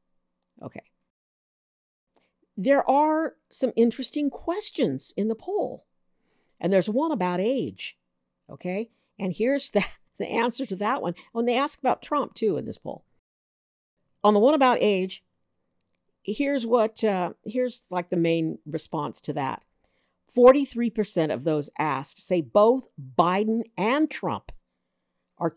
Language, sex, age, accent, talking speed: English, female, 50-69, American, 135 wpm